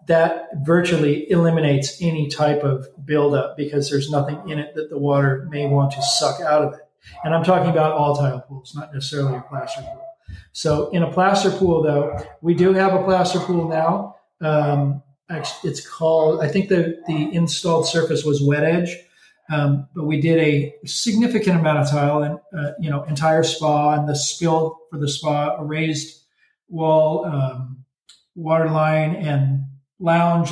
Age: 40-59